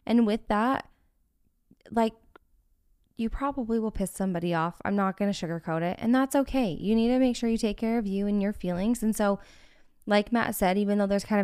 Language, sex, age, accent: English, female, 10-29, American